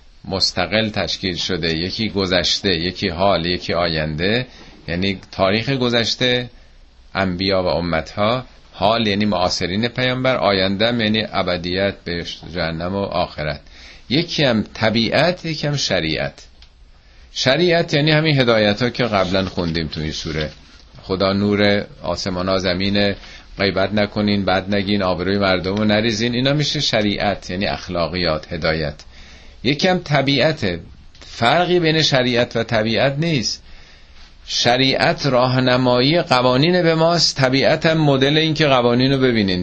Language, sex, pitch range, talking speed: Persian, male, 90-125 Hz, 125 wpm